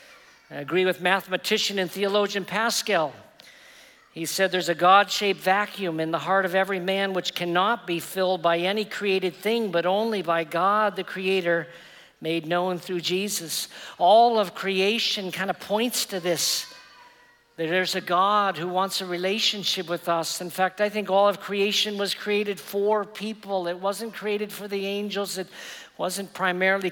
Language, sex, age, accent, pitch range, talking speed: English, male, 50-69, American, 175-205 Hz, 165 wpm